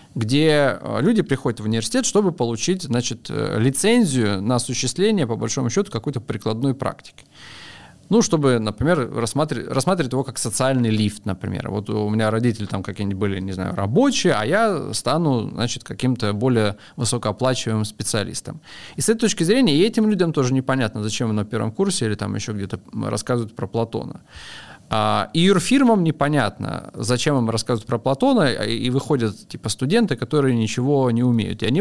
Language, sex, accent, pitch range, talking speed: Russian, male, native, 115-160 Hz, 155 wpm